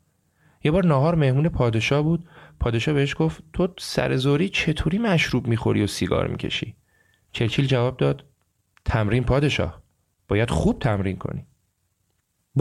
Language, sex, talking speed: Persian, male, 130 wpm